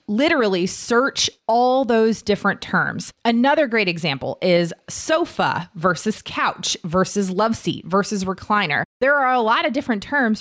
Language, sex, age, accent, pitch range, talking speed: English, female, 30-49, American, 175-230 Hz, 145 wpm